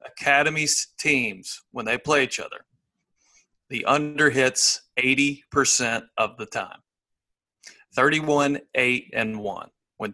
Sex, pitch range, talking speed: male, 120-140 Hz, 95 wpm